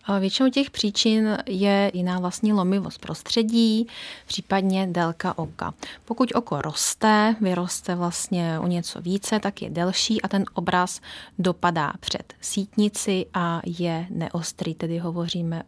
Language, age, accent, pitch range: Czech, 30-49, native, 170-200 Hz